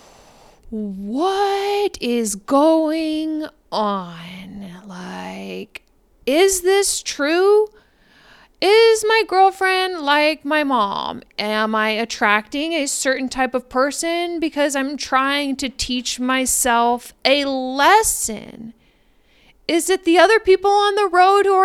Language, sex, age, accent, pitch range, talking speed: English, female, 20-39, American, 210-350 Hz, 110 wpm